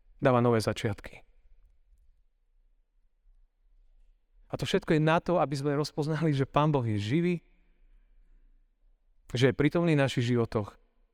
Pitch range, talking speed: 100-140 Hz, 125 wpm